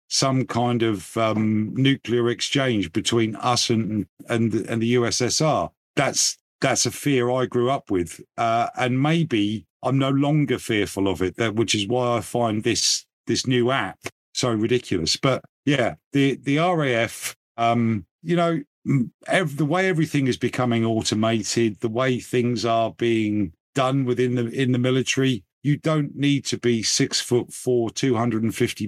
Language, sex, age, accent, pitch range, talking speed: English, male, 50-69, British, 110-130 Hz, 160 wpm